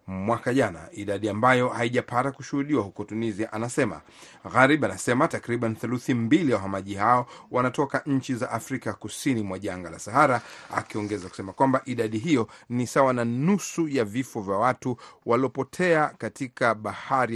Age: 40-59